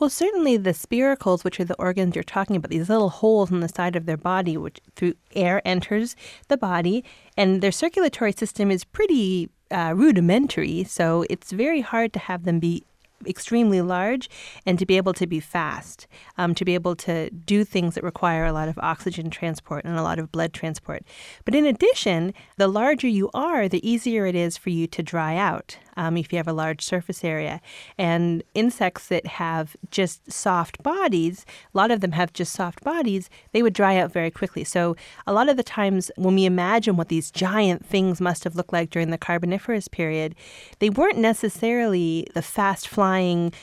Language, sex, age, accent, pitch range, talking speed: English, female, 30-49, American, 170-210 Hz, 195 wpm